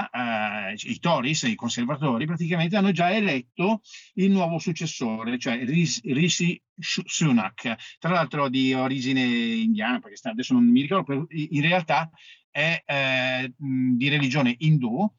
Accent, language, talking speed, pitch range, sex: native, Italian, 130 wpm, 130-215 Hz, male